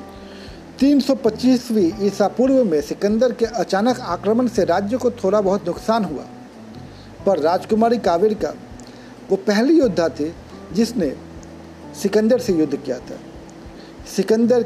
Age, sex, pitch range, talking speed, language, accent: 50-69, male, 155-225 Hz, 120 wpm, Hindi, native